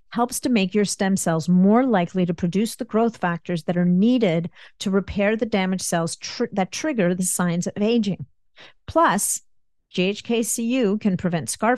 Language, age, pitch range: English, 50-69, 170-205 Hz